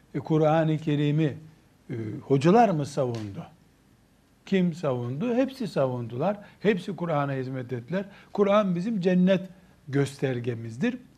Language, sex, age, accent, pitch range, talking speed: Turkish, male, 60-79, native, 140-185 Hz, 90 wpm